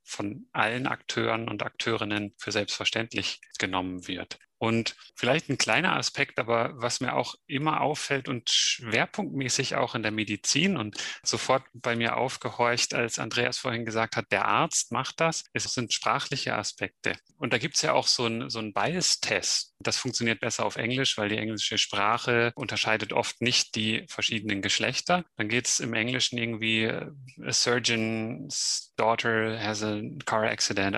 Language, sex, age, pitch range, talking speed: German, male, 30-49, 110-125 Hz, 160 wpm